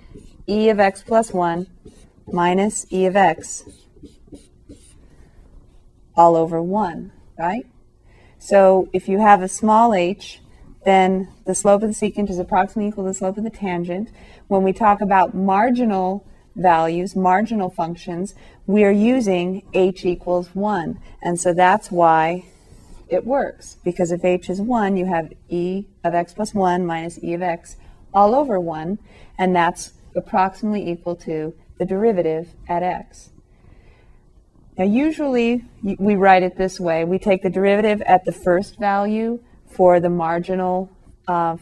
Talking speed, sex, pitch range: 145 wpm, female, 175-205 Hz